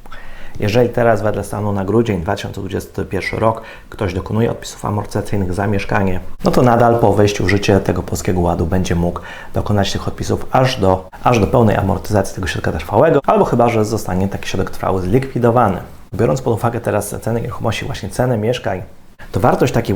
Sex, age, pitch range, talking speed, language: male, 30-49, 100-120 Hz, 170 wpm, Polish